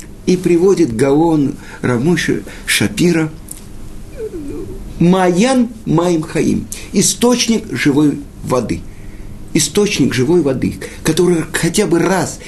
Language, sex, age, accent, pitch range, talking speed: Russian, male, 50-69, native, 125-185 Hz, 85 wpm